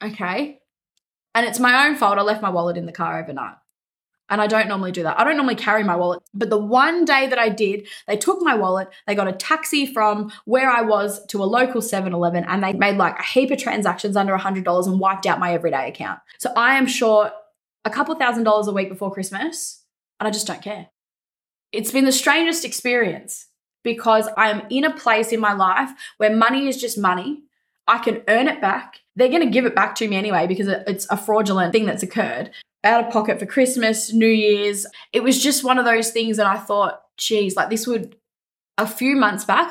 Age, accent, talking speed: 10-29, Australian, 220 wpm